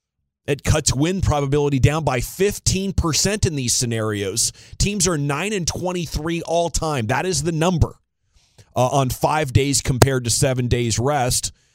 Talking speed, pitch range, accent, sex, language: 145 wpm, 115-160 Hz, American, male, English